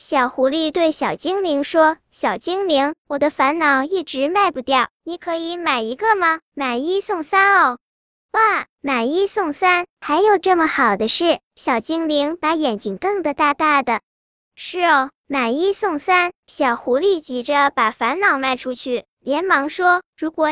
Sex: male